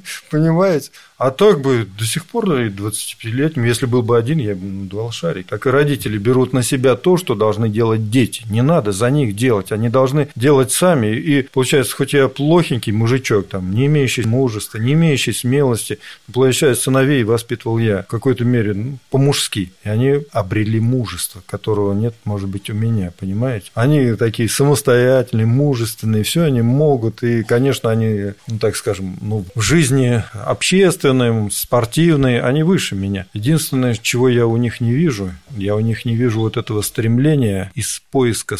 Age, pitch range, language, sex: 40-59, 105-130 Hz, Russian, male